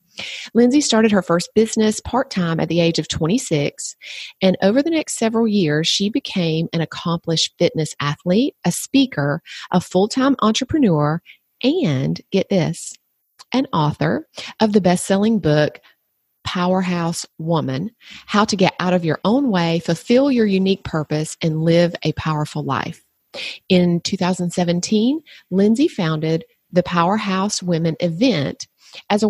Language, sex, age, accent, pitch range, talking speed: English, female, 30-49, American, 160-215 Hz, 135 wpm